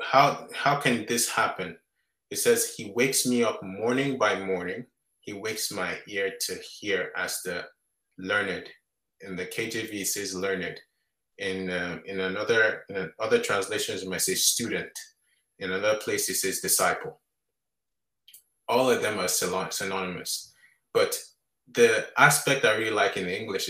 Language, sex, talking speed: English, male, 145 wpm